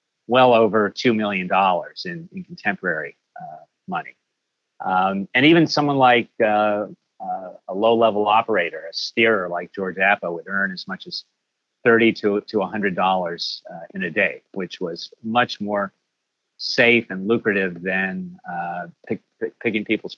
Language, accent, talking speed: English, American, 150 wpm